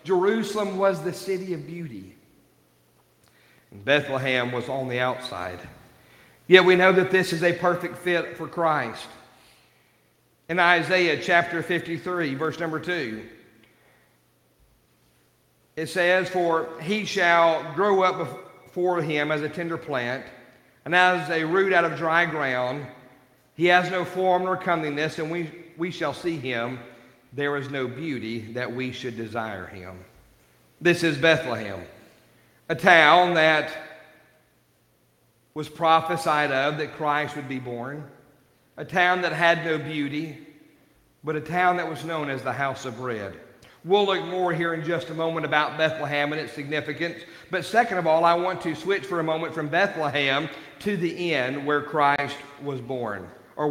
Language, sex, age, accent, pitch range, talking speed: English, male, 50-69, American, 130-170 Hz, 155 wpm